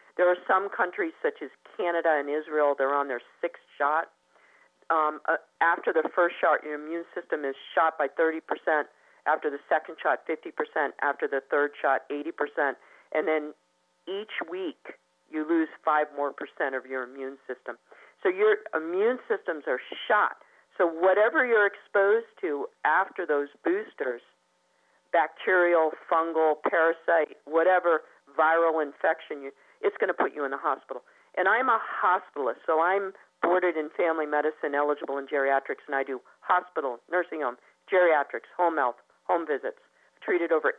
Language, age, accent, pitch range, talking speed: English, 50-69, American, 145-200 Hz, 155 wpm